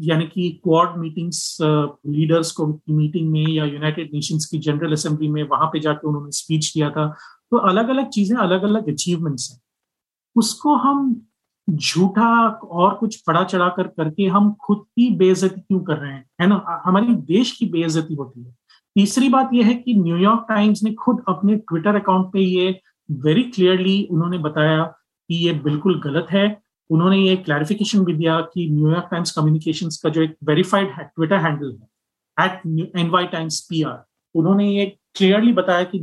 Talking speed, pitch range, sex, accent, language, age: 170 wpm, 155-200 Hz, male, native, Hindi, 30-49